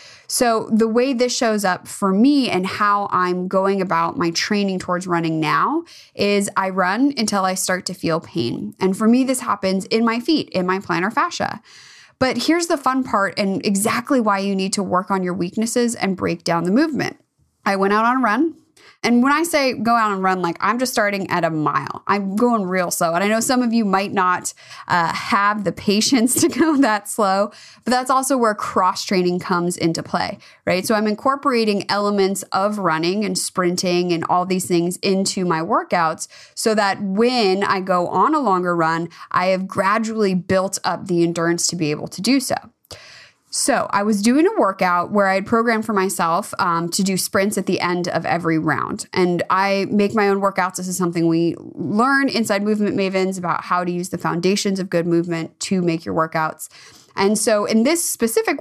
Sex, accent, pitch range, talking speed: female, American, 180-230 Hz, 205 wpm